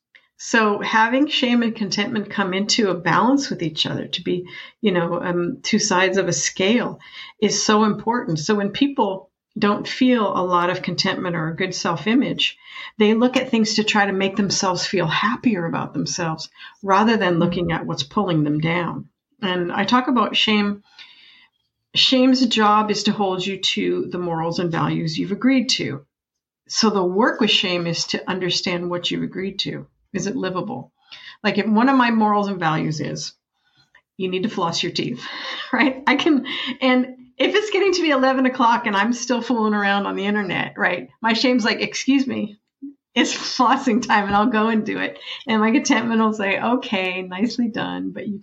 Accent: American